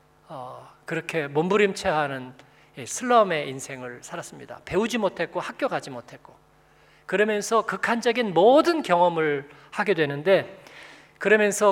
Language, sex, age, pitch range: Korean, male, 40-59, 145-195 Hz